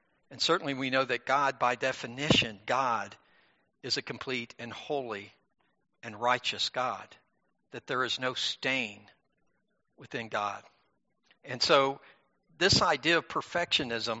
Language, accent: English, American